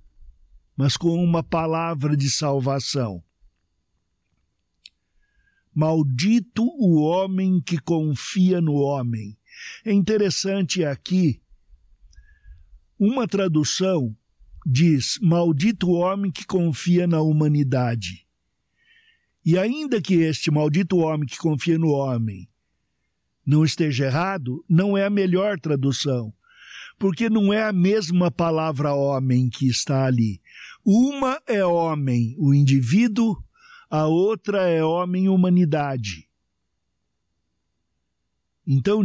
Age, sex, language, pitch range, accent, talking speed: 60-79, male, Portuguese, 125-190 Hz, Brazilian, 100 wpm